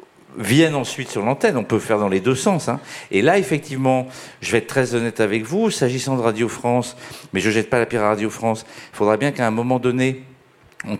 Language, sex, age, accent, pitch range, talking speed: French, male, 50-69, French, 105-130 Hz, 235 wpm